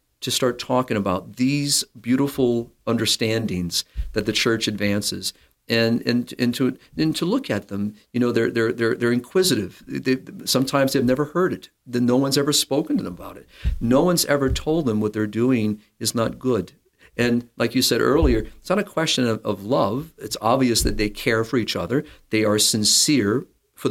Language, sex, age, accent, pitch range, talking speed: English, male, 50-69, American, 110-130 Hz, 195 wpm